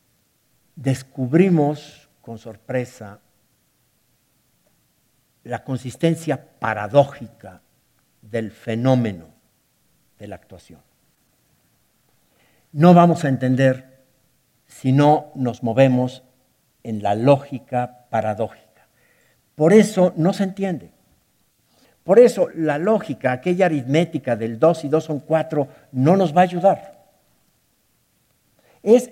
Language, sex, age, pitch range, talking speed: Spanish, male, 60-79, 115-160 Hz, 95 wpm